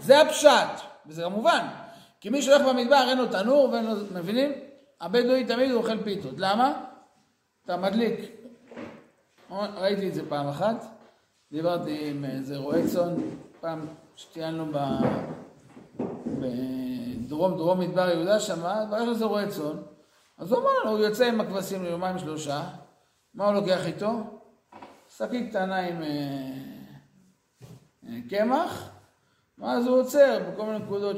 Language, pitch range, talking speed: Hebrew, 165-225 Hz, 120 wpm